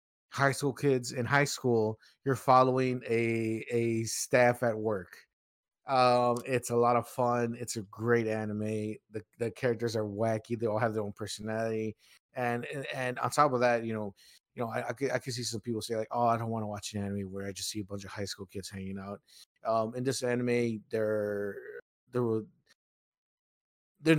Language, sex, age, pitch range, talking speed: English, male, 30-49, 105-120 Hz, 200 wpm